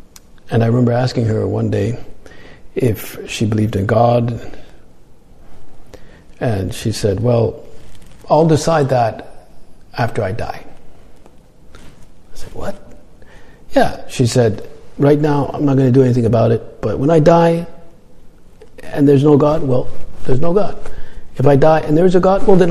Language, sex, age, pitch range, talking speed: English, male, 50-69, 130-190 Hz, 155 wpm